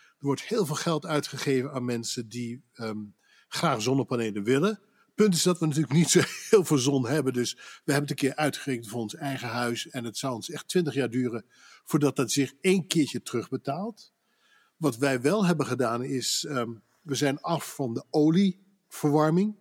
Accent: Dutch